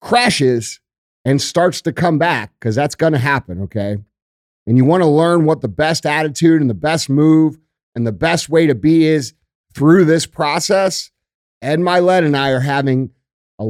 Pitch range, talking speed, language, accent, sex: 120-150 Hz, 185 wpm, English, American, male